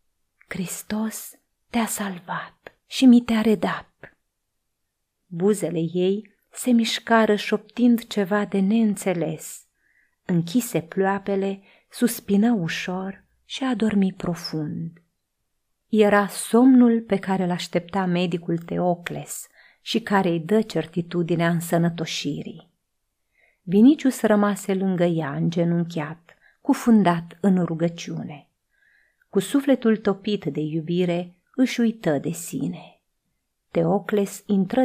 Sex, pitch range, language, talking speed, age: female, 170-205 Hz, Romanian, 95 wpm, 30-49